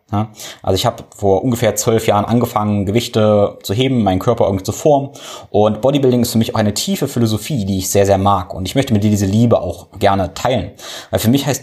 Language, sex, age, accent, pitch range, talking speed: German, male, 20-39, German, 100-115 Hz, 225 wpm